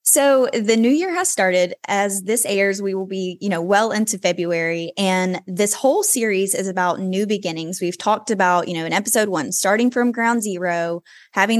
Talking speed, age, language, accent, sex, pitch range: 195 wpm, 10-29, English, American, female, 180-230 Hz